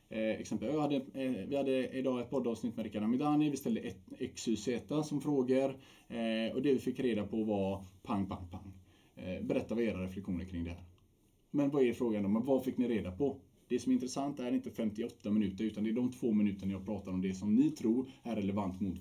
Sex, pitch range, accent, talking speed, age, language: male, 95-120 Hz, Norwegian, 210 wpm, 30-49, Swedish